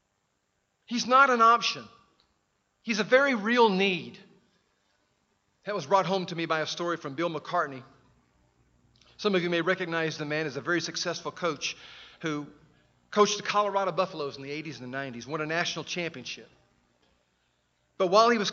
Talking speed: 170 wpm